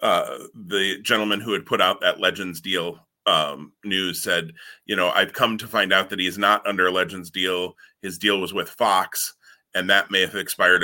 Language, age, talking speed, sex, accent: English, 30-49, 205 wpm, male, American